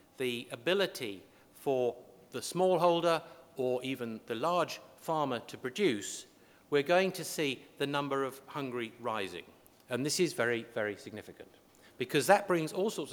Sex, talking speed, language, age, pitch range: male, 145 wpm, English, 50-69, 120-170 Hz